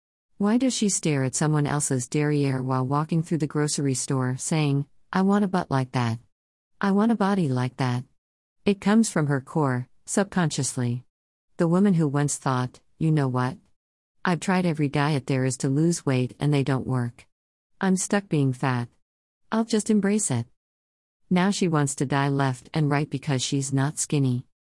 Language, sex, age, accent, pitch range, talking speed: English, female, 50-69, American, 130-180 Hz, 180 wpm